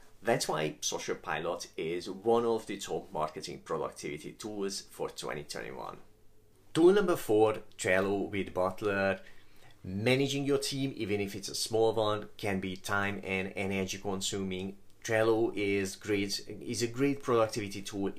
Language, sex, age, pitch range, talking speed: English, male, 30-49, 95-115 Hz, 140 wpm